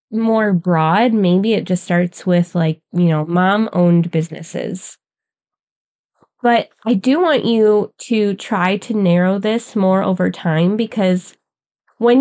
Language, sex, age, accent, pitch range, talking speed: English, female, 20-39, American, 180-220 Hz, 140 wpm